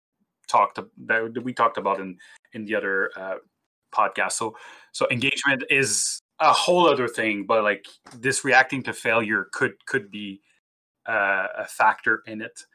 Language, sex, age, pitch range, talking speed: English, male, 20-39, 110-150 Hz, 160 wpm